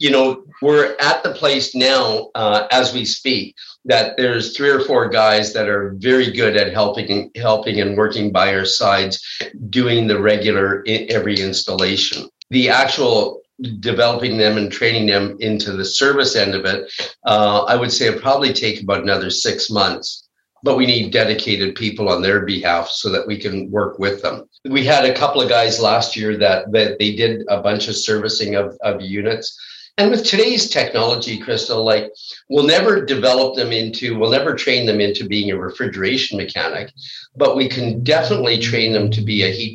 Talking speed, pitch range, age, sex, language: 185 wpm, 100-125 Hz, 50-69, male, English